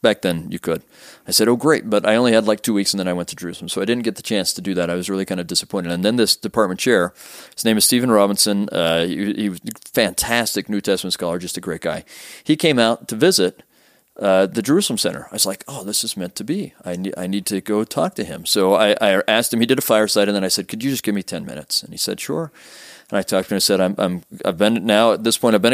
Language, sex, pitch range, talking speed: English, male, 95-110 Hz, 300 wpm